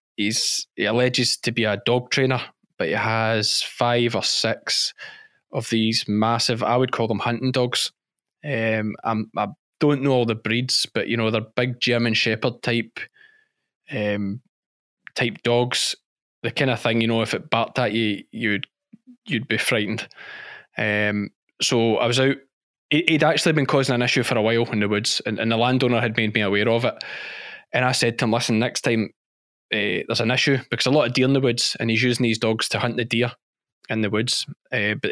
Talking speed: 205 wpm